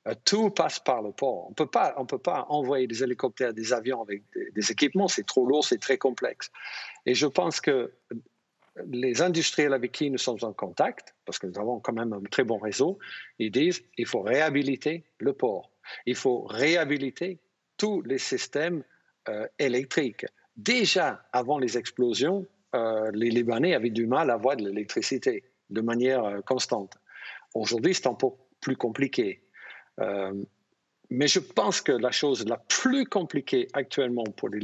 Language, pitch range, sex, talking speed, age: French, 115-155 Hz, male, 170 wpm, 50-69